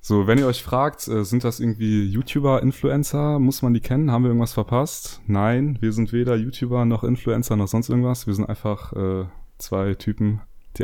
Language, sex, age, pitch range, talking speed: German, male, 20-39, 100-120 Hz, 195 wpm